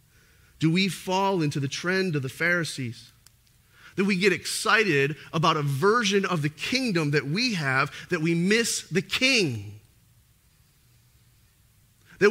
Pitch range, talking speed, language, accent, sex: 120-165 Hz, 135 wpm, English, American, male